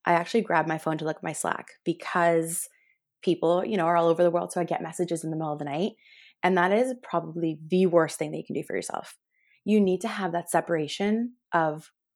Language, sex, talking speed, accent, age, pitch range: English, female, 240 wpm, American, 20-39, 160-200 Hz